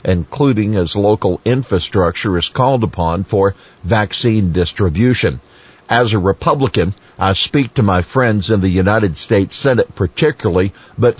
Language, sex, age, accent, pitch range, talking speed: English, male, 50-69, American, 90-115 Hz, 135 wpm